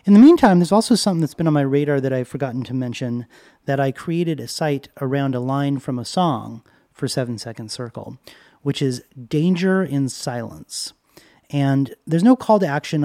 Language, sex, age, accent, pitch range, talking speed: English, male, 30-49, American, 130-165 Hz, 195 wpm